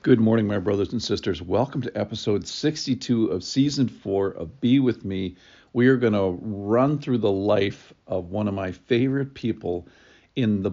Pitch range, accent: 100-130 Hz, American